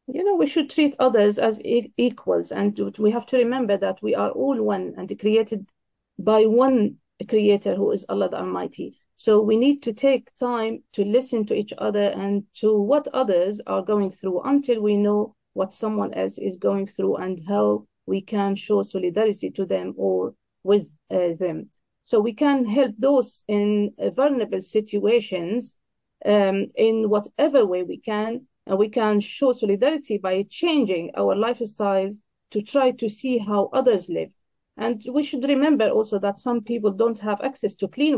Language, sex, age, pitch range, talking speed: English, female, 40-59, 200-245 Hz, 170 wpm